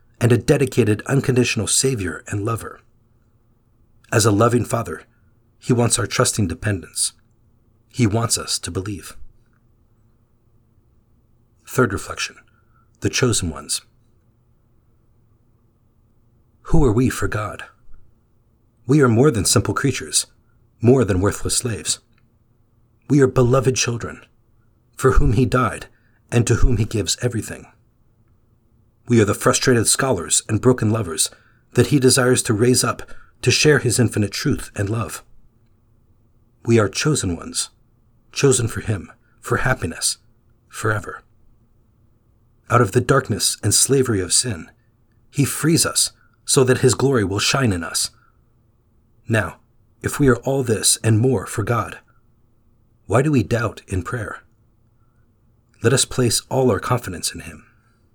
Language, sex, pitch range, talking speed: English, male, 110-120 Hz, 135 wpm